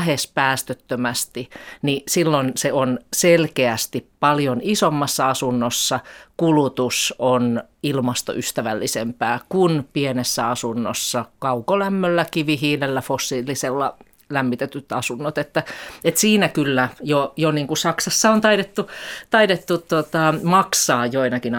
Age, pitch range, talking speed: 30-49, 125-155 Hz, 95 wpm